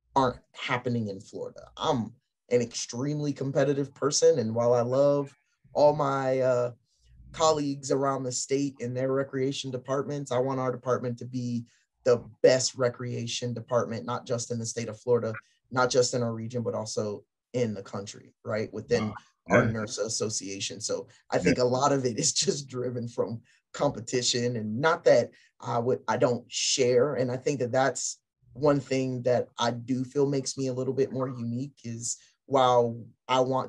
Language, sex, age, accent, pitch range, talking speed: English, male, 20-39, American, 120-135 Hz, 175 wpm